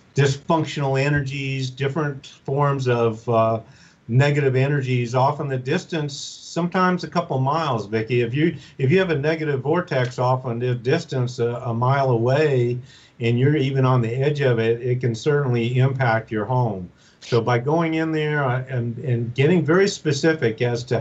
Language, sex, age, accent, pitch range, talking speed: English, male, 50-69, American, 120-140 Hz, 165 wpm